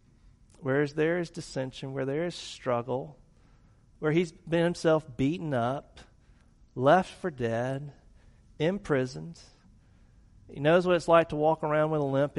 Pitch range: 115-150 Hz